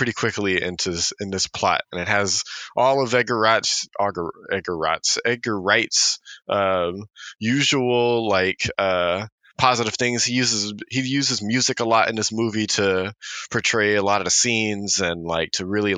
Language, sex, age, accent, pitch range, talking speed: English, male, 20-39, American, 95-115 Hz, 165 wpm